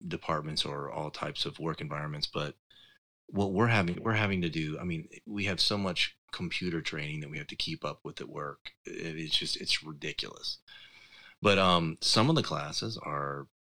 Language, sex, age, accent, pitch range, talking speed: English, male, 30-49, American, 75-100 Hz, 190 wpm